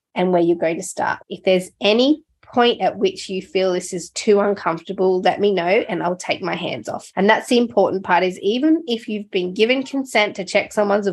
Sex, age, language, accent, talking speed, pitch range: female, 20-39, English, Australian, 225 wpm, 180-230 Hz